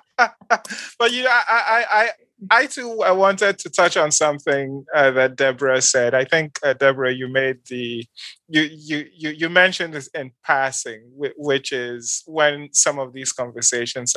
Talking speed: 170 wpm